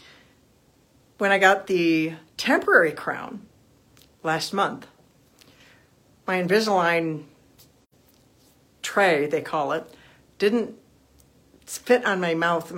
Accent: American